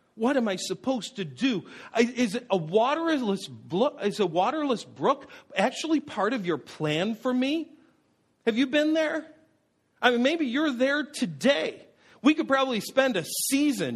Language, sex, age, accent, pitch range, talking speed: English, male, 50-69, American, 185-255 Hz, 145 wpm